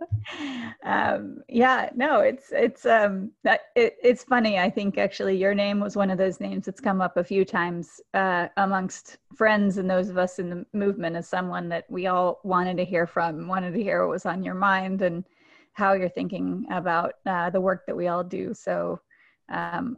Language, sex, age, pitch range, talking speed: English, female, 30-49, 185-220 Hz, 200 wpm